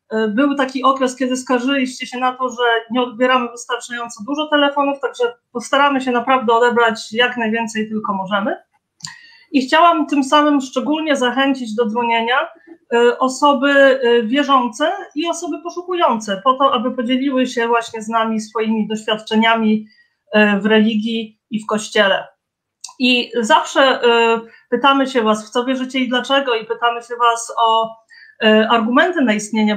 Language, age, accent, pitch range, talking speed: Polish, 30-49, native, 230-285 Hz, 140 wpm